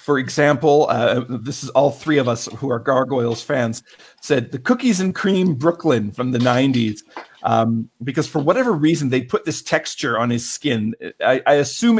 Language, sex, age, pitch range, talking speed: English, male, 50-69, 120-150 Hz, 185 wpm